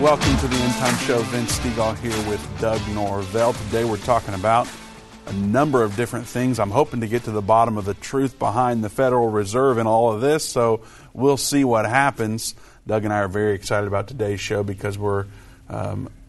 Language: English